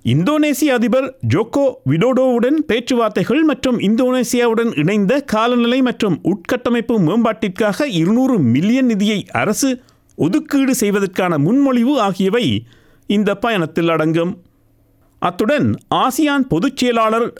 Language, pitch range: Tamil, 185-260 Hz